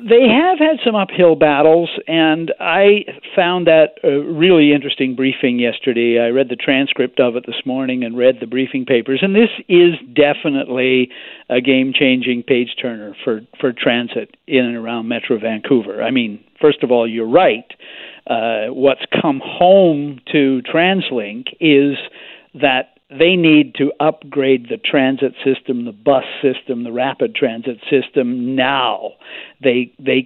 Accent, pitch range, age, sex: American, 125-170 Hz, 50-69, male